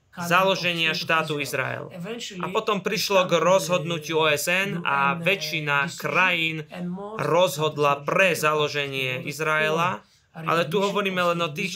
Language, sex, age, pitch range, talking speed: Slovak, male, 20-39, 150-180 Hz, 110 wpm